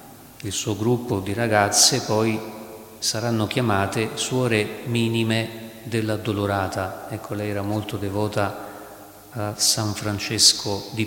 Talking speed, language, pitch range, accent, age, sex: 110 wpm, Italian, 100-120 Hz, native, 50-69, male